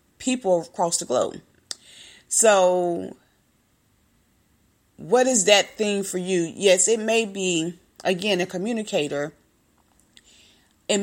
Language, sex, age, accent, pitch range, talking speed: English, female, 30-49, American, 160-200 Hz, 105 wpm